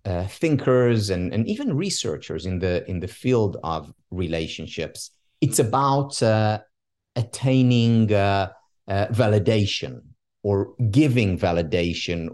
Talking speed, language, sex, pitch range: 110 wpm, English, male, 95-135 Hz